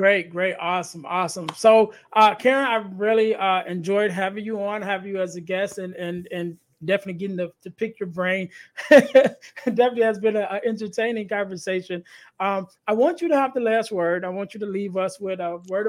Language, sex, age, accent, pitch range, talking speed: English, male, 20-39, American, 185-225 Hz, 205 wpm